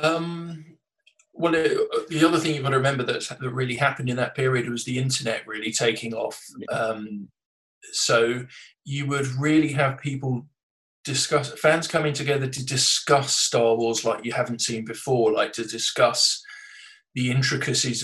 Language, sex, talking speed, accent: English, male, 155 wpm, British